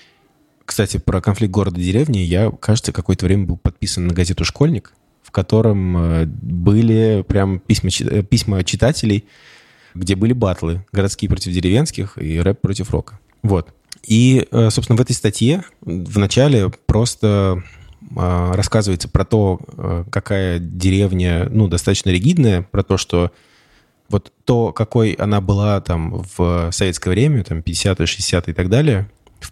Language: Russian